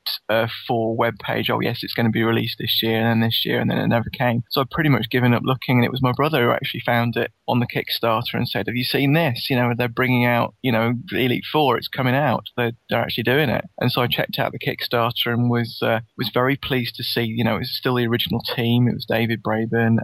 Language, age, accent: English, 20-39, British